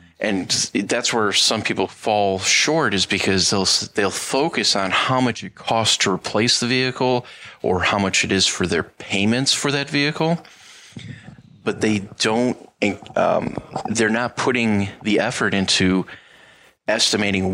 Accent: American